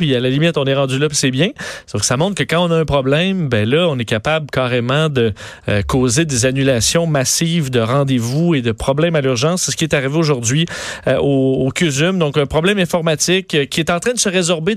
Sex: male